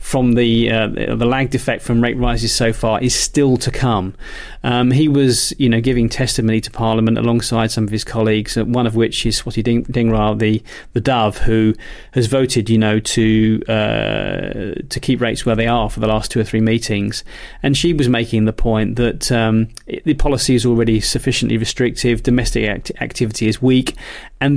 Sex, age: male, 30-49